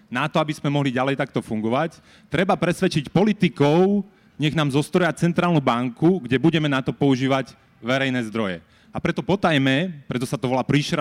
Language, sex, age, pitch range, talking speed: Slovak, male, 30-49, 130-170 Hz, 170 wpm